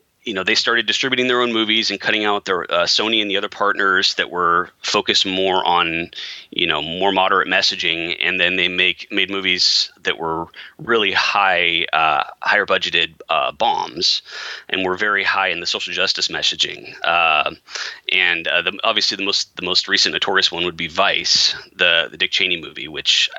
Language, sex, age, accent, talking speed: English, male, 30-49, American, 185 wpm